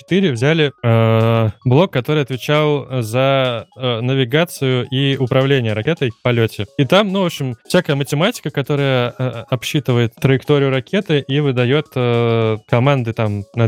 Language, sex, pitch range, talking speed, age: Russian, male, 120-145 Hz, 135 wpm, 20-39